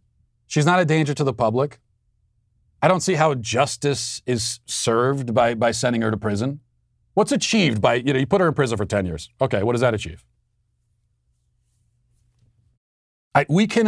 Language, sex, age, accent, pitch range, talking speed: English, male, 40-59, American, 110-140 Hz, 175 wpm